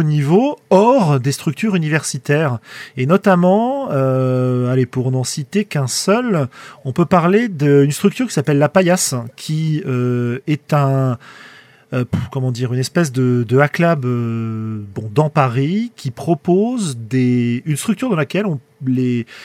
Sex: male